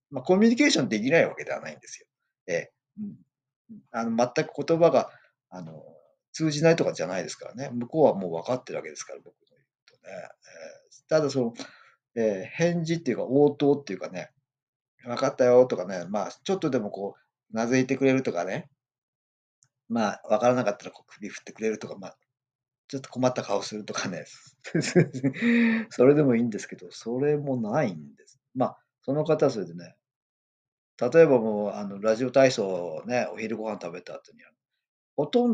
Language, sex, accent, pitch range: Japanese, male, native, 120-170 Hz